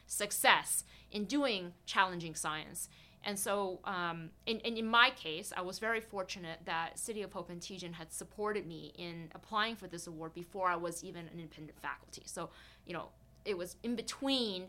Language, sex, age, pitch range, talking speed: English, female, 20-39, 165-210 Hz, 185 wpm